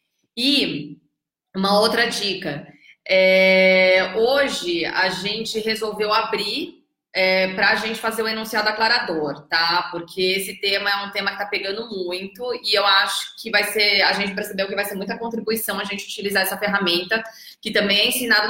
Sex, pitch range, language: female, 190-230 Hz, Portuguese